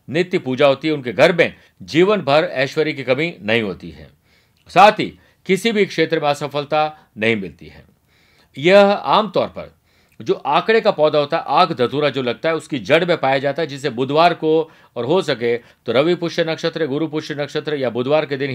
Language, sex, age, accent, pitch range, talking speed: Hindi, male, 50-69, native, 135-175 Hz, 200 wpm